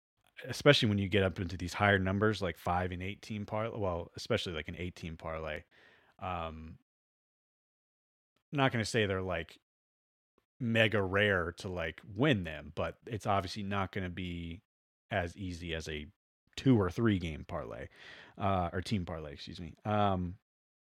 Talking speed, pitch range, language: 165 wpm, 85-110 Hz, English